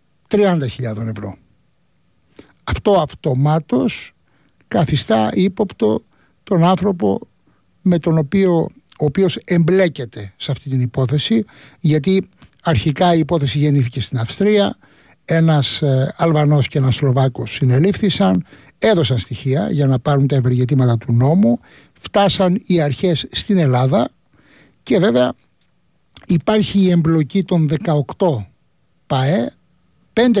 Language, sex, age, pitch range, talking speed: Greek, male, 60-79, 135-185 Hz, 105 wpm